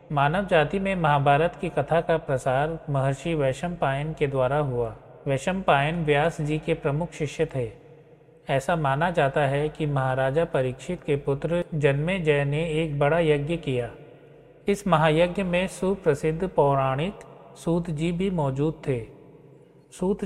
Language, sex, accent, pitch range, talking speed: Hindi, male, native, 145-170 Hz, 135 wpm